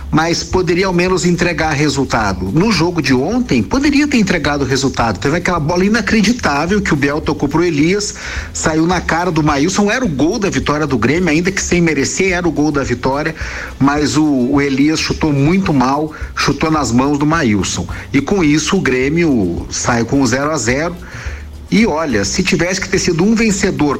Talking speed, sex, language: 190 wpm, male, Portuguese